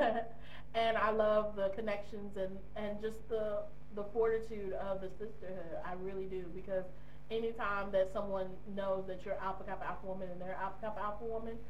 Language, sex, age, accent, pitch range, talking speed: English, female, 30-49, American, 195-225 Hz, 170 wpm